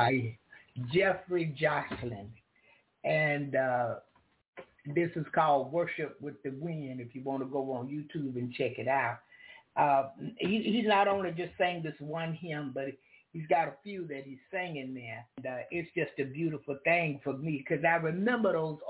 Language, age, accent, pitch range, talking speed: English, 60-79, American, 140-175 Hz, 170 wpm